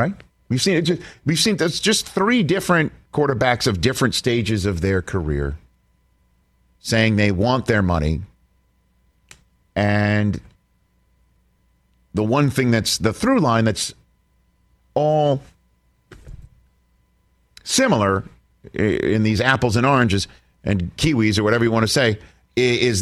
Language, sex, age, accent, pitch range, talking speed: English, male, 50-69, American, 85-130 Hz, 125 wpm